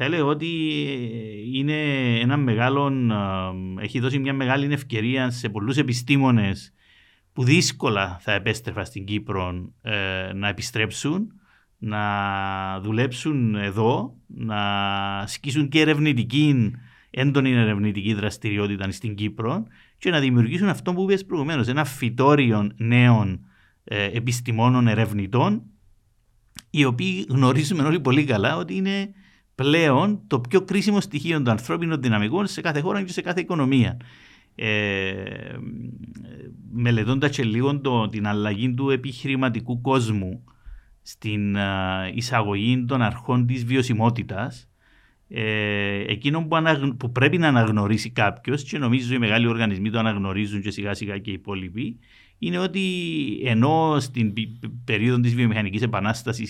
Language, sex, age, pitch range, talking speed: Greek, male, 50-69, 105-140 Hz, 120 wpm